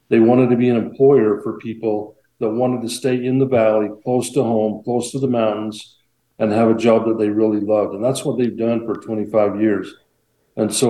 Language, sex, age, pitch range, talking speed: English, male, 50-69, 110-125 Hz, 220 wpm